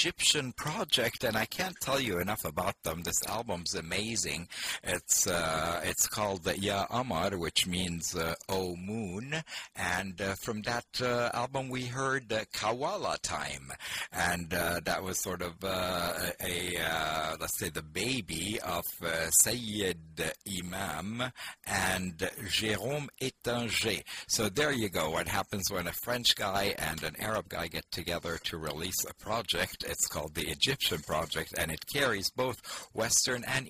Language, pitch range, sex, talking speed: English, 90-115 Hz, male, 155 wpm